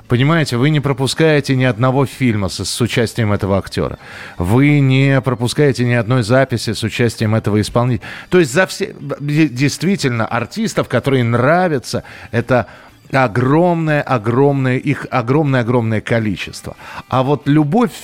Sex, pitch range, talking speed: male, 125-155 Hz, 130 wpm